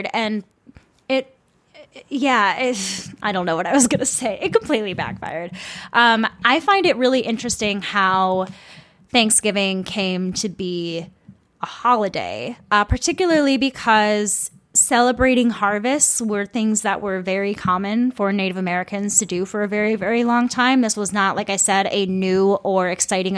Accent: American